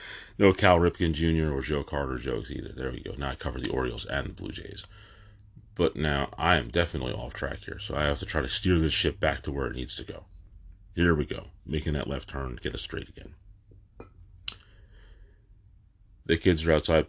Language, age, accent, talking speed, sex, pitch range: English, 30-49, American, 215 wpm, male, 75-100 Hz